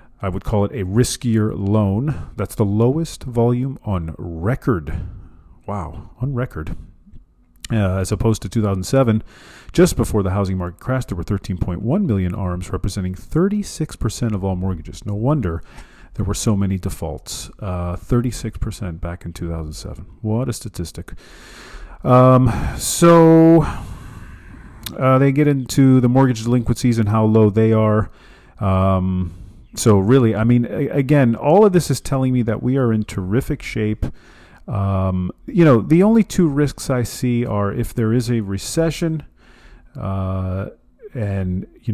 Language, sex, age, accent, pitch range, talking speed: English, male, 40-59, American, 95-125 Hz, 145 wpm